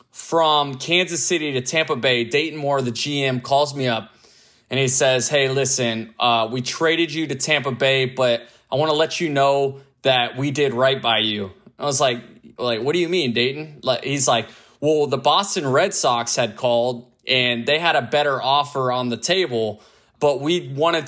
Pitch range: 135-165 Hz